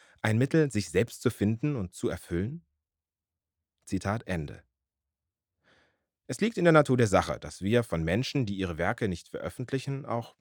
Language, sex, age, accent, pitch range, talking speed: German, male, 30-49, German, 90-140 Hz, 160 wpm